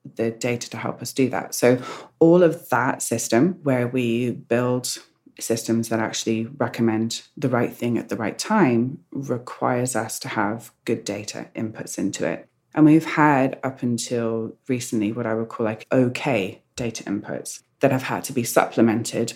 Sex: female